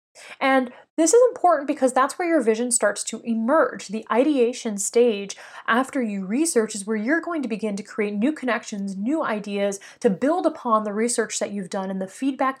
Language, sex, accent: English, female, American